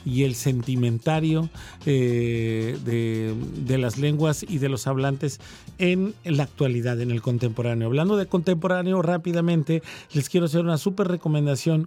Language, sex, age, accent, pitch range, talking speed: Spanish, male, 40-59, Mexican, 135-170 Hz, 140 wpm